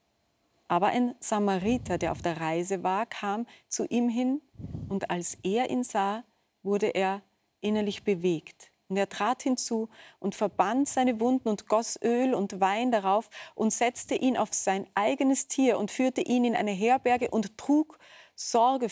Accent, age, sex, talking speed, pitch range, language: German, 30-49, female, 160 wpm, 190-255 Hz, German